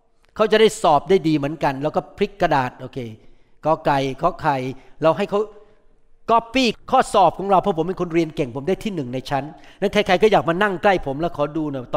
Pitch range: 160-215 Hz